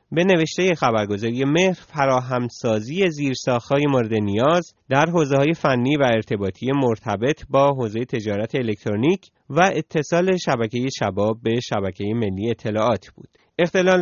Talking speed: 120 wpm